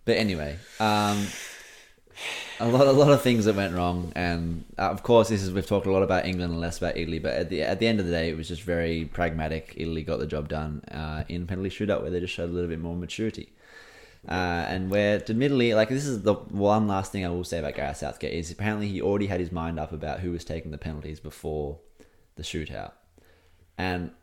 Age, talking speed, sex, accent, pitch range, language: 20-39, 230 wpm, male, Australian, 85-105 Hz, English